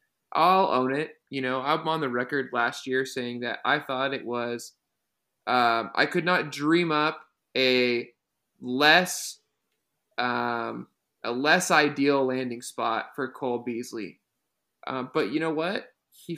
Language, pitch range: English, 130-160 Hz